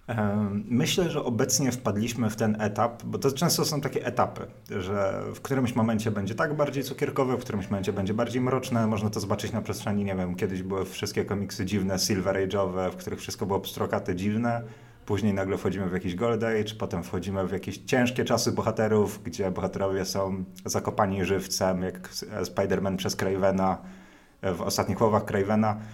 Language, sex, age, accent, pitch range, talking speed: Polish, male, 30-49, native, 95-115 Hz, 175 wpm